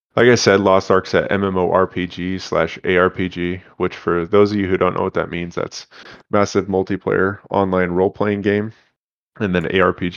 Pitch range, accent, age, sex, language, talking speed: 90-100 Hz, American, 20-39, male, English, 170 wpm